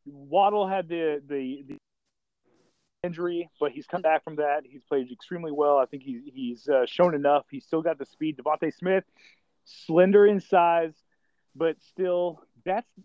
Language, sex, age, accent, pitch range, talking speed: English, male, 30-49, American, 145-185 Hz, 170 wpm